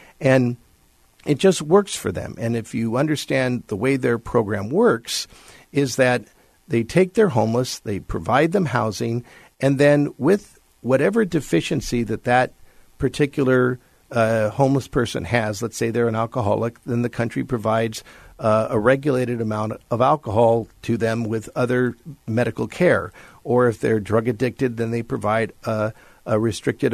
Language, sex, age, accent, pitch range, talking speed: English, male, 50-69, American, 110-130 Hz, 155 wpm